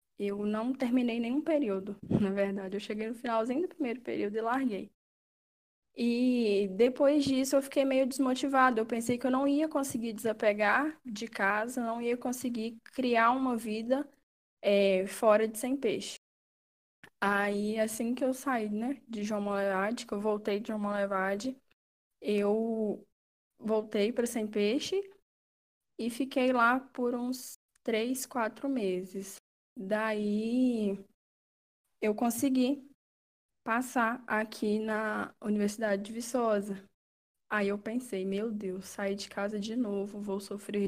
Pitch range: 205-245 Hz